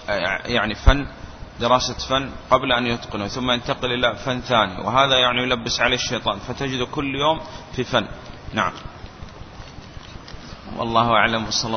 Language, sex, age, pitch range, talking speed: Arabic, male, 30-49, 110-125 Hz, 135 wpm